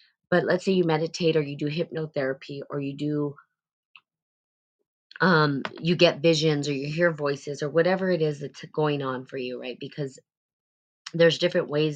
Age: 20-39